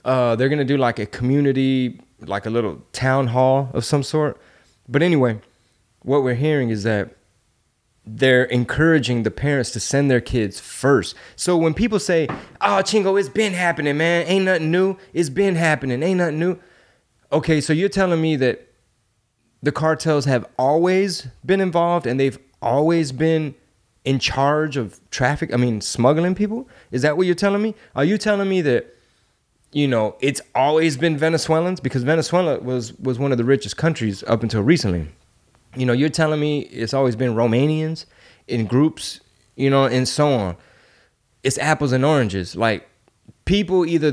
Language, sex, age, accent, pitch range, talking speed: English, male, 20-39, American, 120-165 Hz, 175 wpm